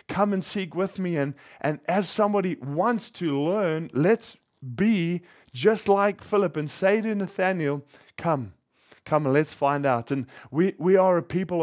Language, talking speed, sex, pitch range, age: English, 170 wpm, male, 145-190 Hz, 20-39